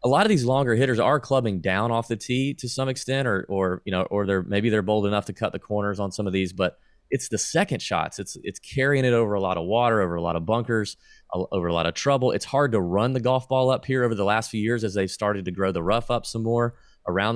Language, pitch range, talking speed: English, 90-120 Hz, 285 wpm